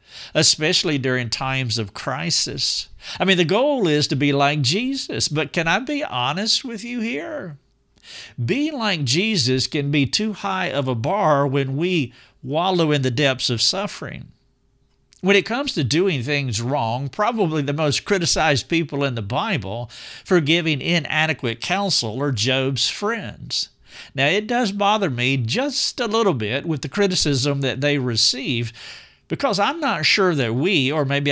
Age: 50-69